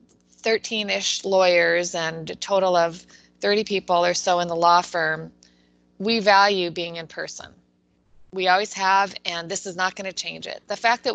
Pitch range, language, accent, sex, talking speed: 170-210 Hz, English, American, female, 180 wpm